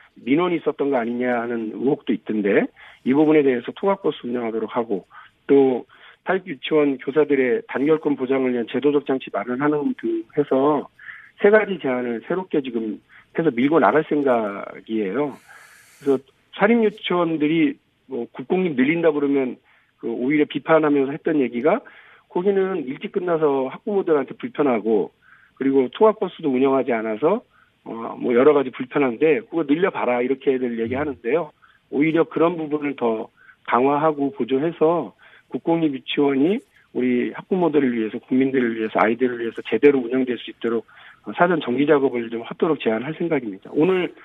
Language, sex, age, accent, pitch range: Korean, male, 50-69, native, 125-165 Hz